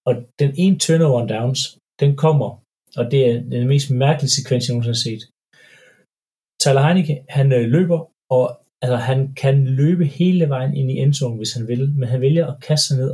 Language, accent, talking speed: Danish, native, 180 wpm